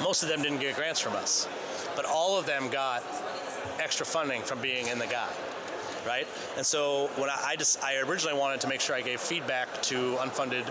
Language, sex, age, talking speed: English, male, 30-49, 215 wpm